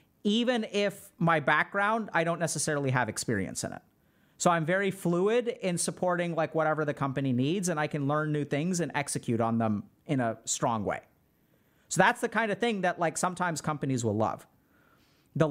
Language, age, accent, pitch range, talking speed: English, 40-59, American, 150-185 Hz, 190 wpm